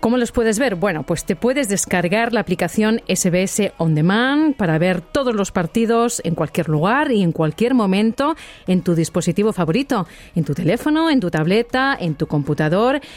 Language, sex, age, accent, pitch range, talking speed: Spanish, female, 40-59, Spanish, 175-230 Hz, 180 wpm